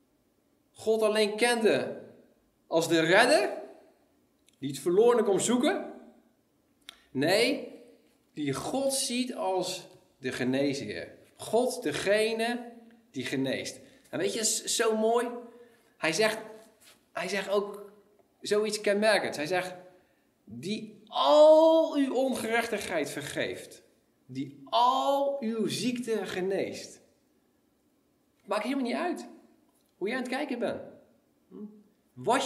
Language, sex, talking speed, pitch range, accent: Dutch, male, 110 wpm, 170-240 Hz, Dutch